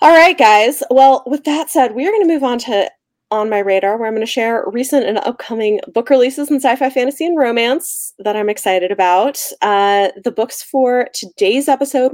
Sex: female